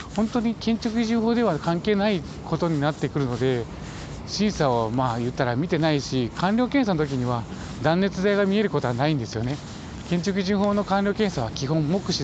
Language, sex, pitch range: Japanese, male, 115-165 Hz